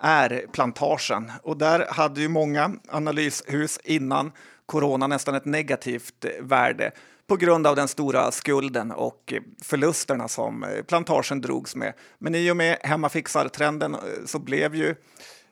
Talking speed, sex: 130 wpm, male